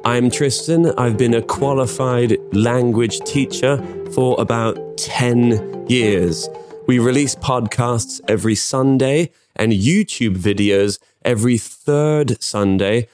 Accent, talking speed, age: British, 105 wpm, 20-39